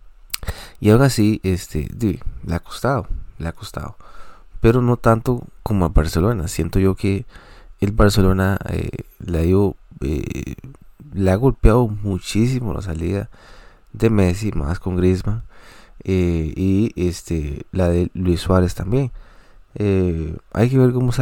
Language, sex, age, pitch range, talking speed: Spanish, male, 20-39, 90-110 Hz, 140 wpm